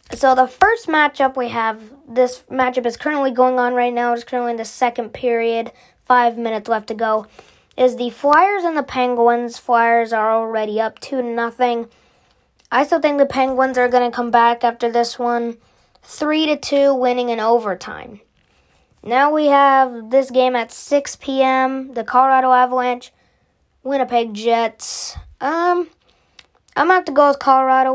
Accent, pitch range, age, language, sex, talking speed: American, 235-270 Hz, 20-39, English, female, 170 wpm